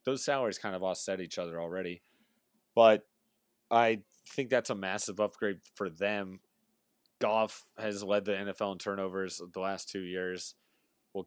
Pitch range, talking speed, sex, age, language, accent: 90-115 Hz, 155 wpm, male, 30-49, English, American